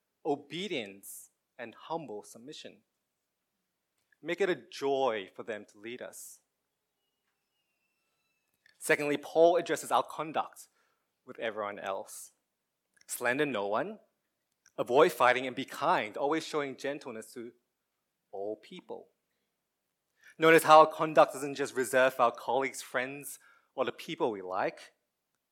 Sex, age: male, 20-39